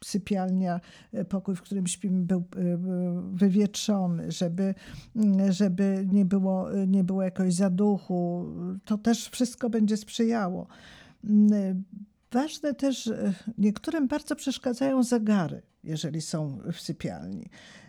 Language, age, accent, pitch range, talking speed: Polish, 50-69, native, 180-230 Hz, 95 wpm